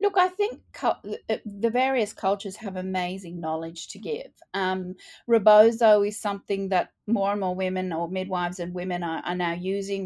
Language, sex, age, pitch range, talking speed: English, female, 30-49, 180-220 Hz, 165 wpm